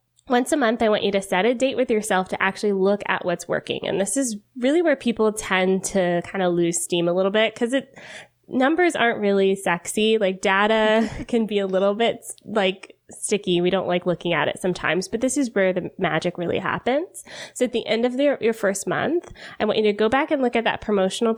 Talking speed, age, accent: 235 wpm, 20-39, American